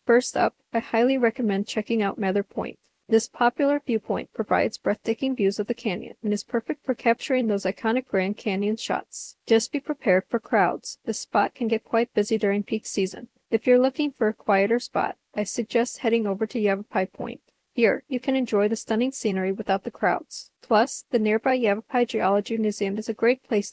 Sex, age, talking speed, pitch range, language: female, 40-59, 190 wpm, 205-245 Hz, English